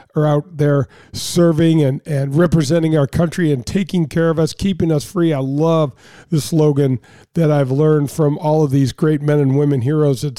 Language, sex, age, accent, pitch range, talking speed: English, male, 50-69, American, 135-160 Hz, 195 wpm